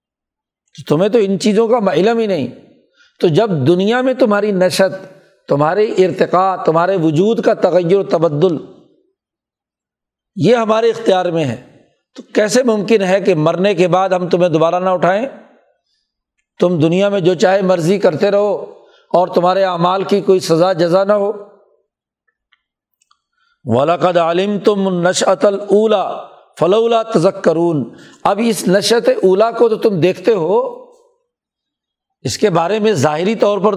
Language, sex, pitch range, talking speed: Urdu, male, 175-220 Hz, 140 wpm